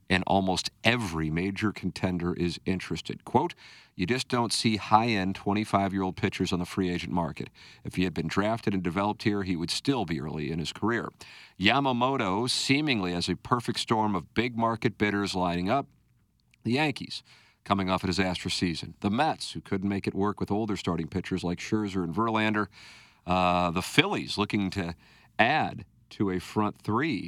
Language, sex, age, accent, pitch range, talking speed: English, male, 50-69, American, 90-105 Hz, 175 wpm